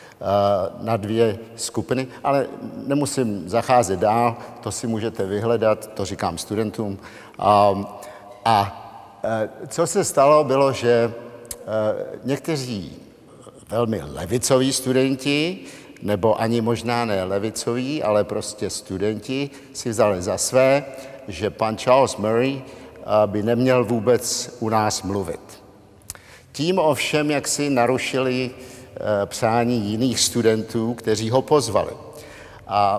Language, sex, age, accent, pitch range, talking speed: Czech, male, 50-69, native, 105-130 Hz, 105 wpm